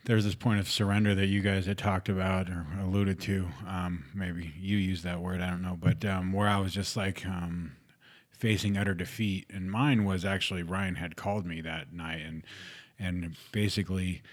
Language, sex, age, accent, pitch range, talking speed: English, male, 30-49, American, 90-100 Hz, 195 wpm